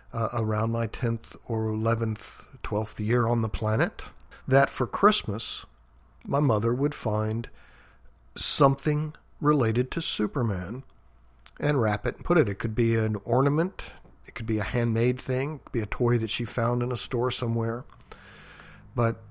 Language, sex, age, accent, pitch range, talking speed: English, male, 50-69, American, 110-135 Hz, 160 wpm